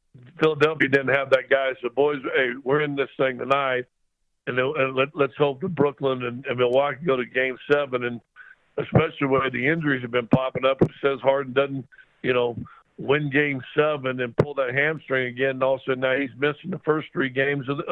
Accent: American